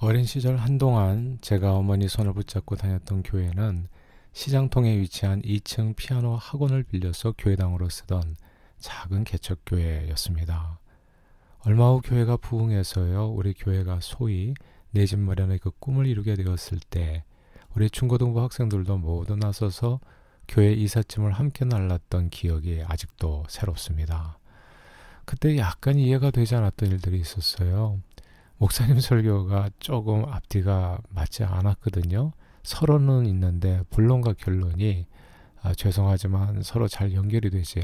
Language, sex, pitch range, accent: Korean, male, 90-110 Hz, native